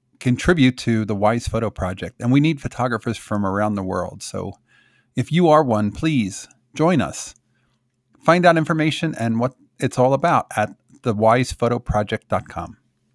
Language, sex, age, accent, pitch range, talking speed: English, male, 40-59, American, 105-130 Hz, 145 wpm